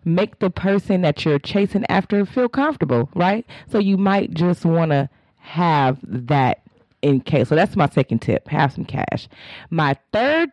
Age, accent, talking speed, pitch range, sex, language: 30-49, American, 170 wpm, 135-195 Hz, female, English